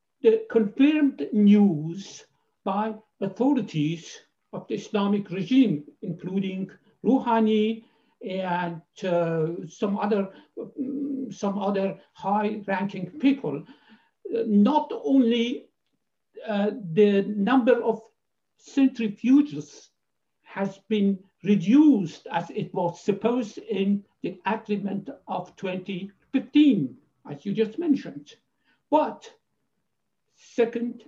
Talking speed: 85 wpm